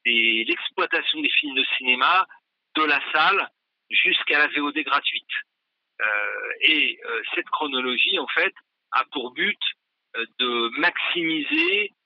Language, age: French, 40-59